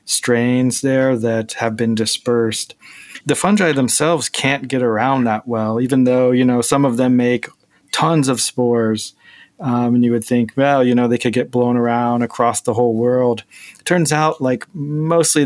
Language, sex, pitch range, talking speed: English, male, 115-130 Hz, 180 wpm